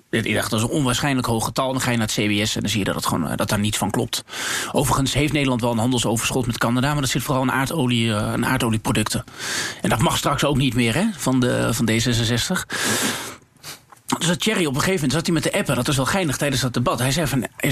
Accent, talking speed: Dutch, 255 wpm